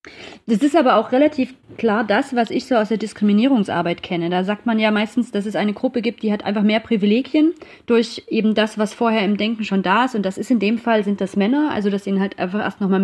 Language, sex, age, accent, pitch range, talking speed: German, female, 30-49, German, 190-235 Hz, 255 wpm